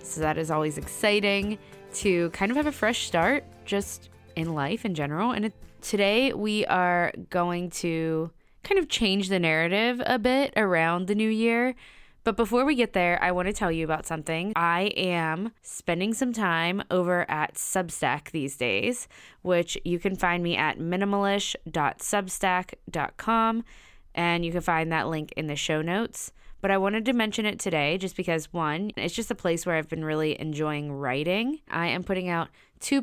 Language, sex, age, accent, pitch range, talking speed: English, female, 20-39, American, 160-205 Hz, 180 wpm